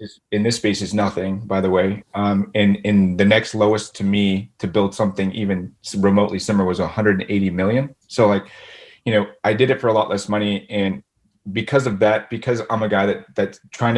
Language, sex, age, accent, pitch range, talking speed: English, male, 30-49, American, 105-130 Hz, 205 wpm